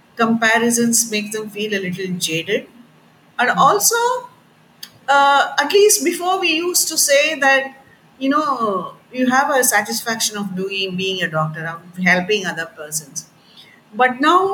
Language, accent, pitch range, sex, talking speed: English, Indian, 195-275 Hz, female, 145 wpm